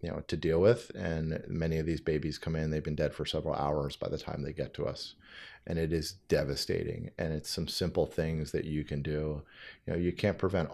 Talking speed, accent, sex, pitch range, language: 240 wpm, American, male, 75-90 Hz, English